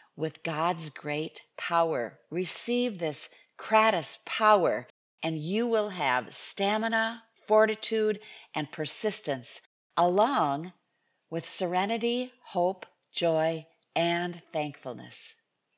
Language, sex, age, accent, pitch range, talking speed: English, female, 50-69, American, 150-215 Hz, 90 wpm